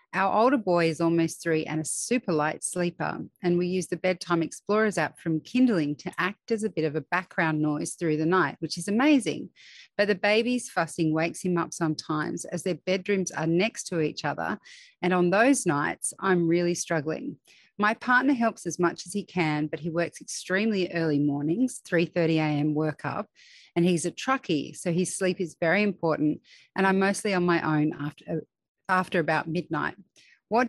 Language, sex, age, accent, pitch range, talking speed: English, female, 30-49, Australian, 160-195 Hz, 190 wpm